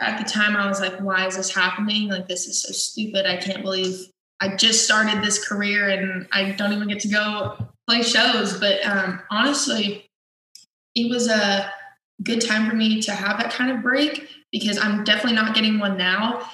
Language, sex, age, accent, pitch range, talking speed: English, female, 20-39, American, 195-220 Hz, 200 wpm